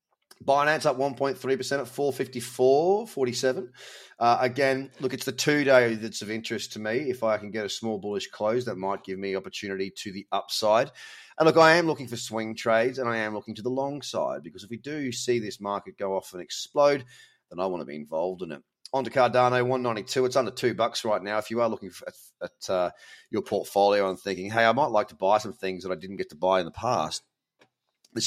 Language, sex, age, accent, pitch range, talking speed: English, male, 30-49, Australian, 110-140 Hz, 225 wpm